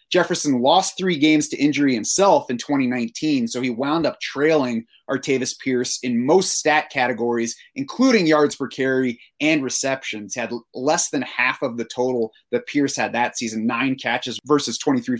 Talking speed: 165 wpm